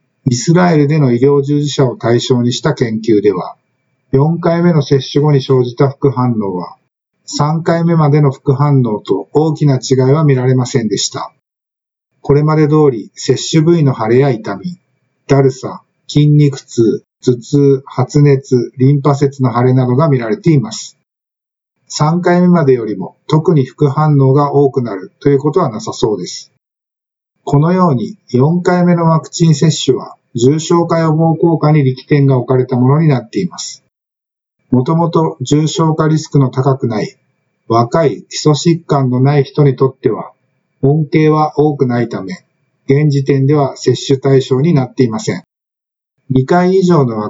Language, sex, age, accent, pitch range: Japanese, male, 50-69, native, 130-155 Hz